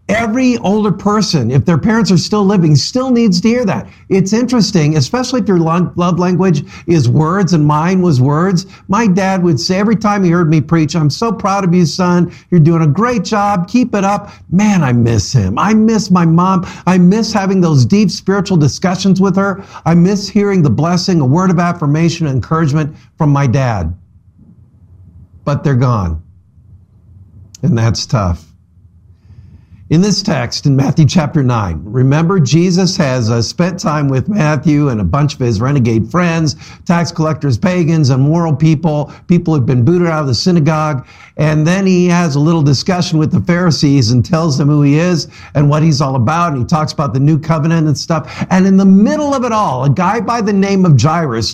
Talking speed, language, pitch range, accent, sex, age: 195 wpm, English, 135-185 Hz, American, male, 50-69